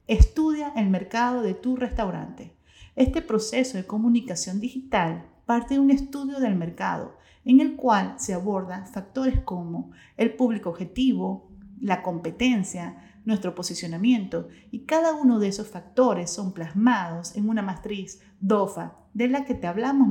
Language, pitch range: Spanish, 185-245 Hz